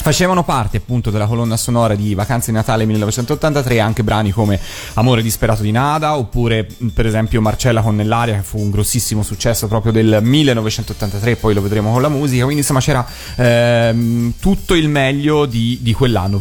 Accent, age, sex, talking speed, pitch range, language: native, 30-49, male, 170 wpm, 110-135 Hz, Italian